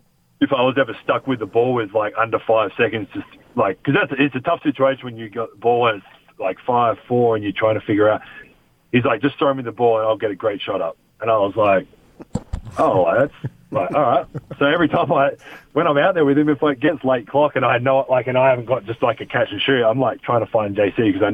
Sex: male